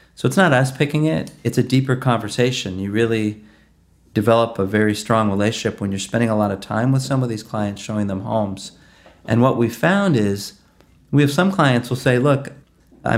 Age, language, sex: 40-59, English, male